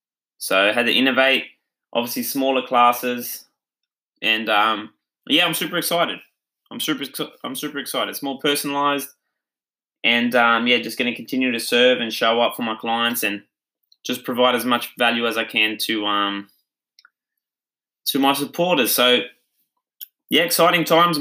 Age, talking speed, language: 20-39, 155 wpm, English